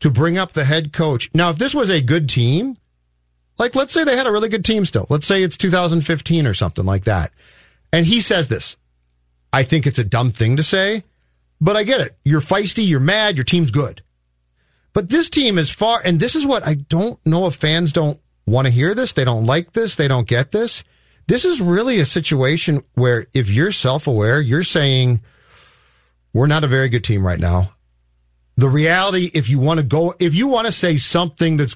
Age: 40-59